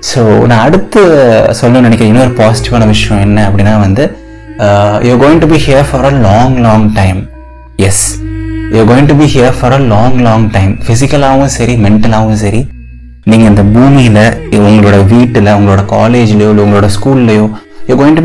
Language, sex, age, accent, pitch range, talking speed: Tamil, male, 20-39, native, 105-135 Hz, 80 wpm